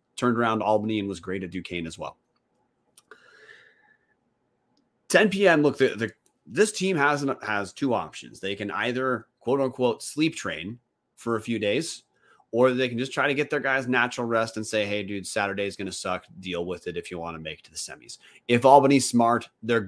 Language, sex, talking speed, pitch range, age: English, male, 210 wpm, 95-125 Hz, 30-49